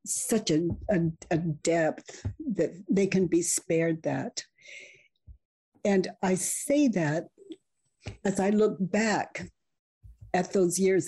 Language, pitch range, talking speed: English, 170-230 Hz, 115 wpm